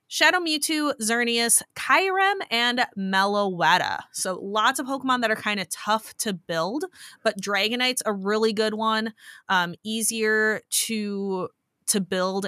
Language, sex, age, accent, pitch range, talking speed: English, female, 20-39, American, 190-245 Hz, 135 wpm